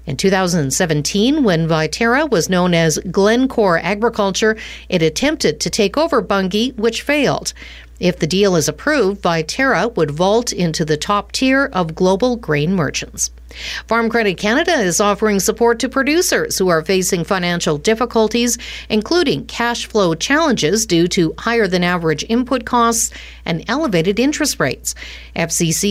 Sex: female